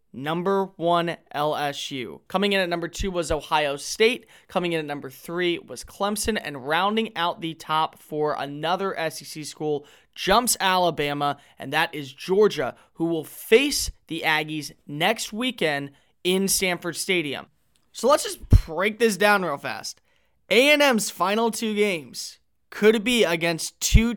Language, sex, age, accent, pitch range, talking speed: English, male, 20-39, American, 160-210 Hz, 145 wpm